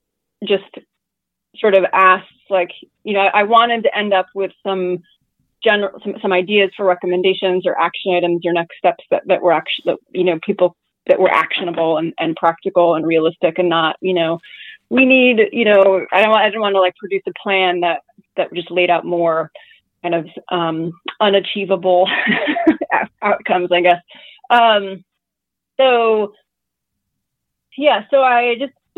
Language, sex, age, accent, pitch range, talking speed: English, female, 30-49, American, 175-210 Hz, 165 wpm